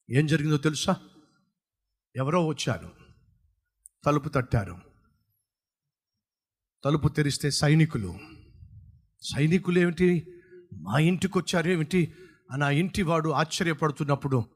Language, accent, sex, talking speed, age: Telugu, native, male, 70 wpm, 50-69